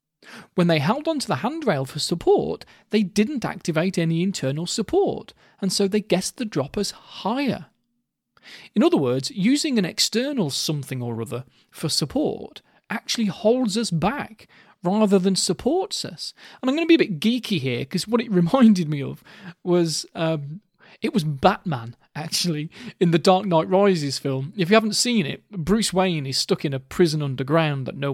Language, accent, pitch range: English, British, 150-205 Hz